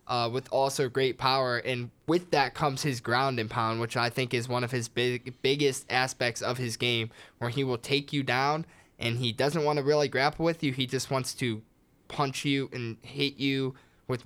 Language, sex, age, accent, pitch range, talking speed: English, male, 20-39, American, 120-150 Hz, 210 wpm